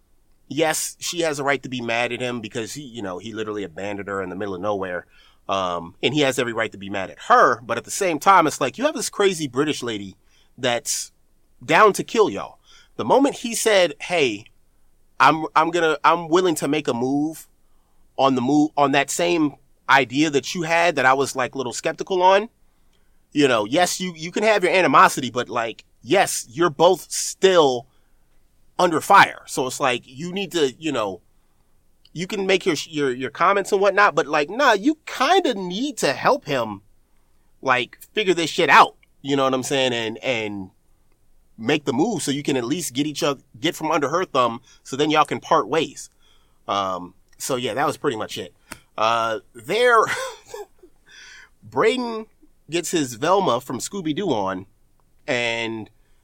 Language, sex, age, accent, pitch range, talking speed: English, male, 30-49, American, 115-180 Hz, 195 wpm